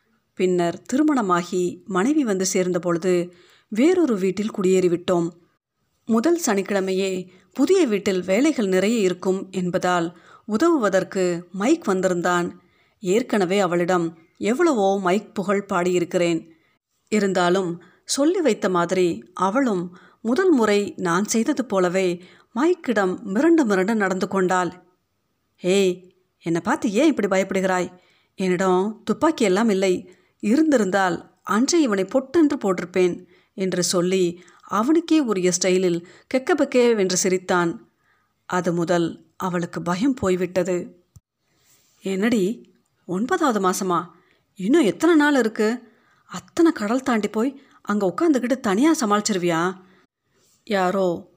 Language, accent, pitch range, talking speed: Tamil, native, 180-230 Hz, 95 wpm